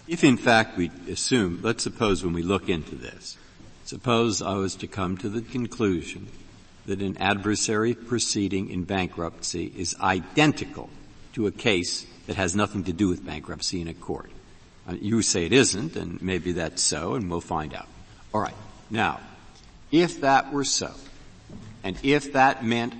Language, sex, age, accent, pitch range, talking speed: English, male, 60-79, American, 95-125 Hz, 165 wpm